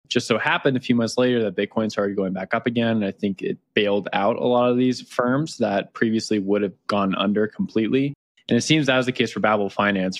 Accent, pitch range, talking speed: American, 100-120 Hz, 245 wpm